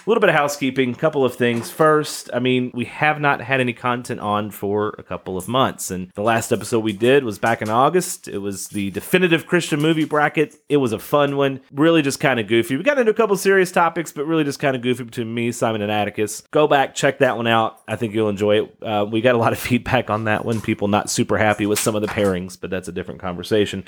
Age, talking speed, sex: 30-49, 265 wpm, male